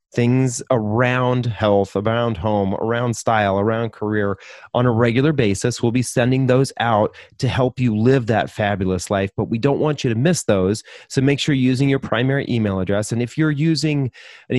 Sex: male